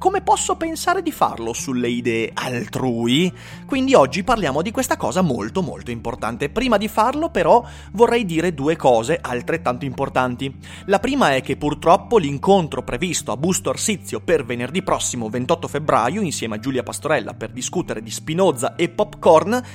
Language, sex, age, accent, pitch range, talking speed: Italian, male, 30-49, native, 125-210 Hz, 160 wpm